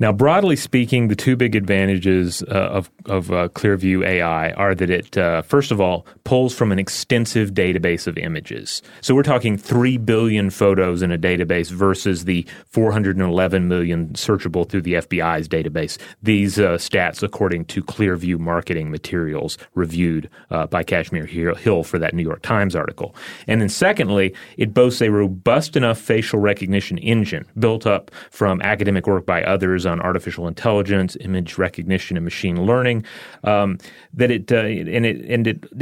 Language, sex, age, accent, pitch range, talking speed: English, male, 30-49, American, 90-115 Hz, 165 wpm